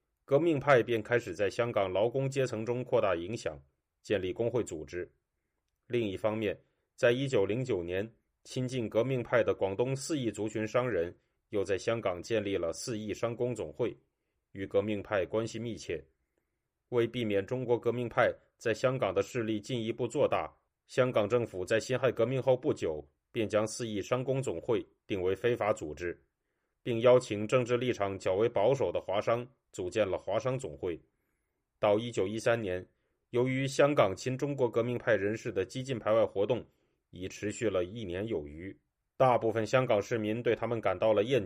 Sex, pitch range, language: male, 105-125 Hz, Chinese